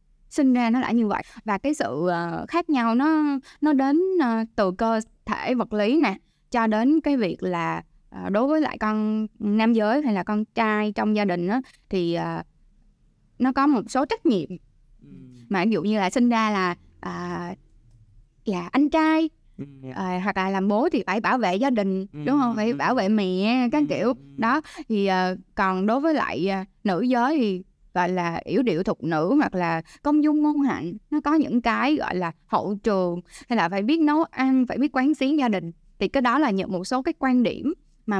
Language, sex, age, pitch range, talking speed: Vietnamese, female, 10-29, 190-275 Hz, 200 wpm